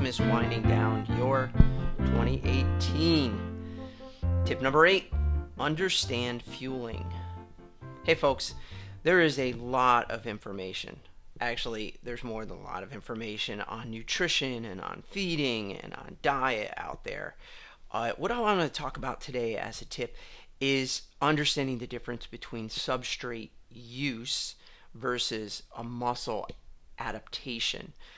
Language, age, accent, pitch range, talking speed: English, 30-49, American, 110-140 Hz, 120 wpm